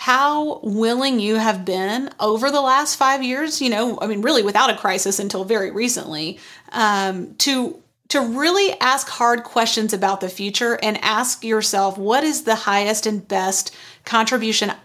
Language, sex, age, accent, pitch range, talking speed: English, female, 30-49, American, 200-250 Hz, 165 wpm